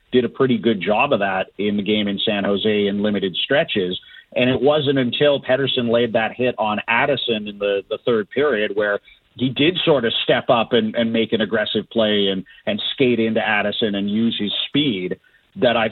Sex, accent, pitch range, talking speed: male, American, 105-130 Hz, 205 wpm